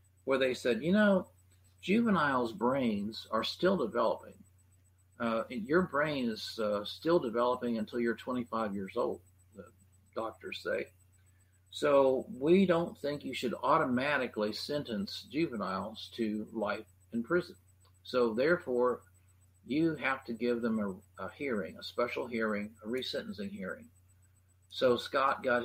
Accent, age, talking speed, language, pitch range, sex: American, 50-69, 135 wpm, English, 95-125 Hz, male